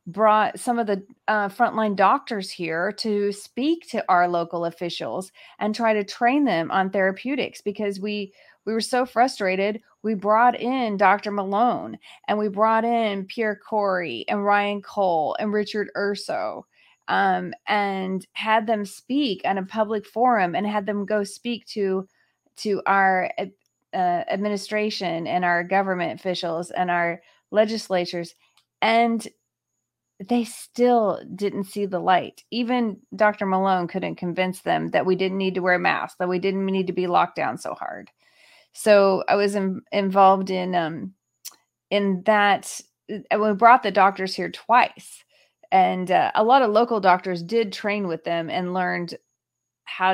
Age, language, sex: 30-49, English, female